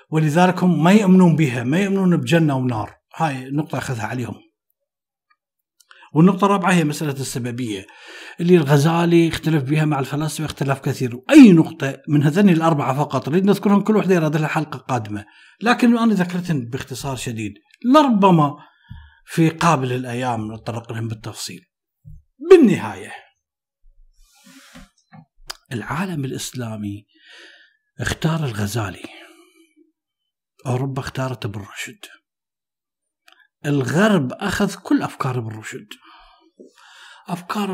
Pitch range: 125-180 Hz